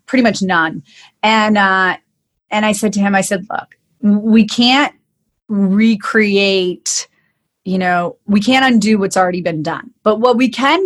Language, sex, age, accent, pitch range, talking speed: English, female, 30-49, American, 190-240 Hz, 160 wpm